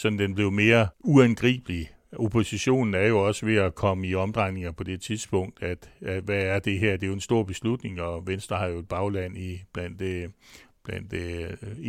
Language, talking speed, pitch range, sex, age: Danish, 195 wpm, 90-115 Hz, male, 60-79